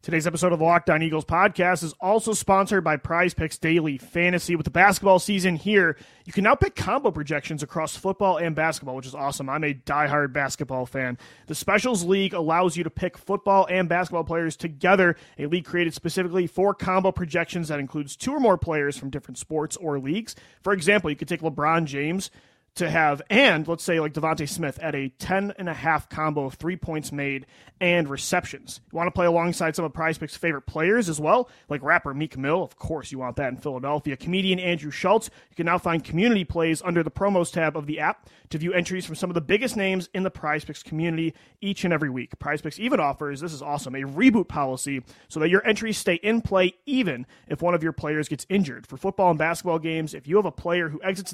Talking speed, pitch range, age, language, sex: 215 wpm, 150-185 Hz, 30-49, English, male